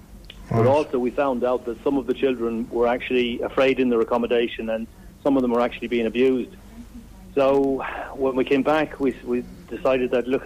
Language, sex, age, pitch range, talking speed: English, male, 40-59, 115-130 Hz, 195 wpm